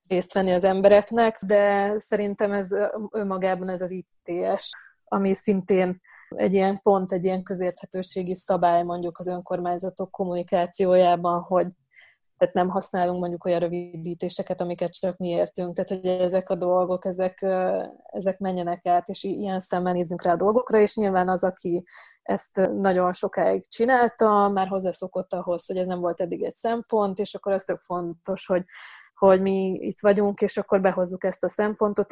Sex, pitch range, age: female, 180-200 Hz, 20-39